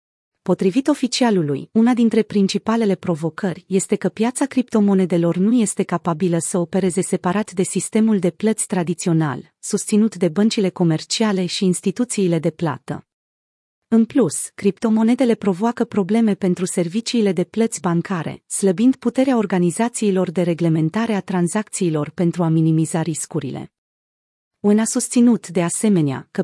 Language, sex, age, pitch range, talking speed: Romanian, female, 30-49, 175-220 Hz, 125 wpm